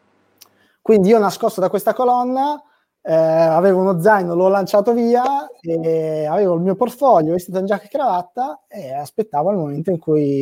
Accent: native